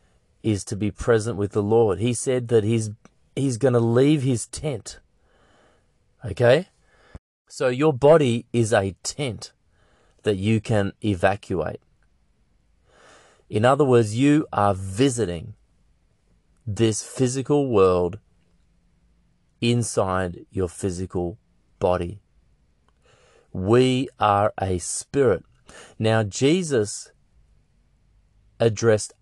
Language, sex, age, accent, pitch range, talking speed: English, male, 30-49, Australian, 95-125 Hz, 100 wpm